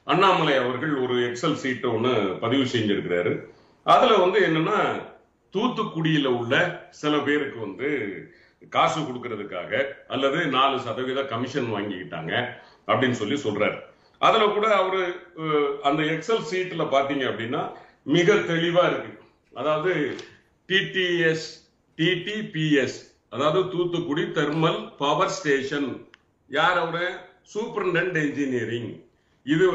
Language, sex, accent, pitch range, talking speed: Tamil, male, native, 145-185 Hz, 95 wpm